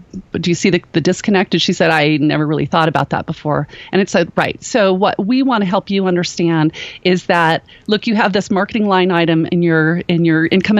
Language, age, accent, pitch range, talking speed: English, 40-59, American, 170-220 Hz, 235 wpm